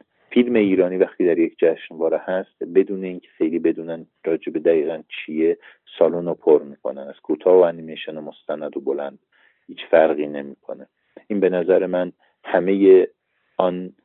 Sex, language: male, Persian